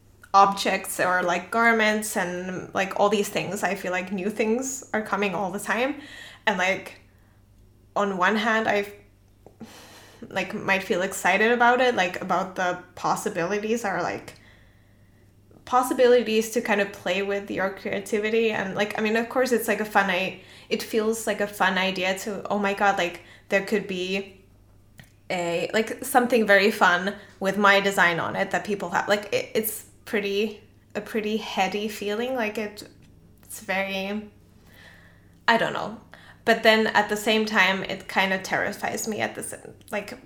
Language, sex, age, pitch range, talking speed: English, female, 10-29, 180-230 Hz, 165 wpm